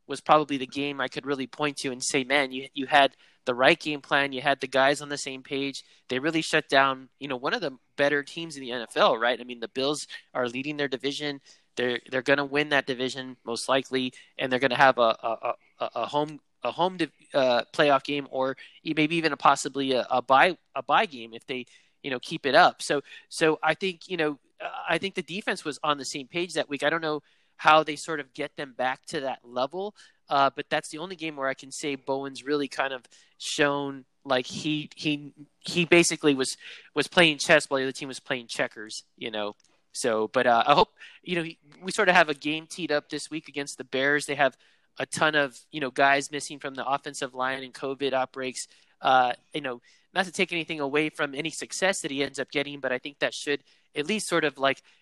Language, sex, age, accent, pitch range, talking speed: English, male, 20-39, American, 130-155 Hz, 235 wpm